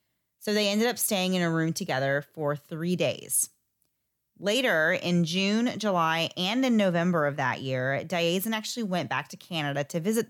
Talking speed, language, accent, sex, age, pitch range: 175 wpm, English, American, female, 30-49, 150-190 Hz